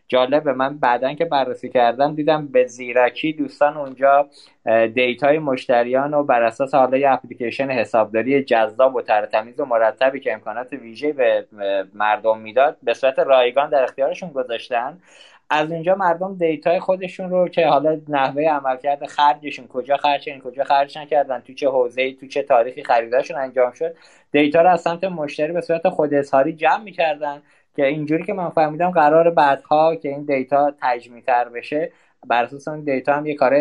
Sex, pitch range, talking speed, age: male, 130-170 Hz, 155 wpm, 20-39